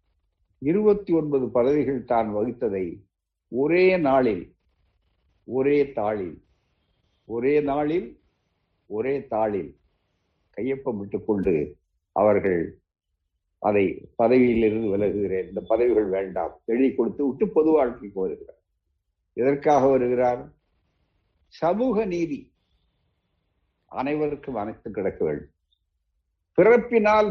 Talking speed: 75 wpm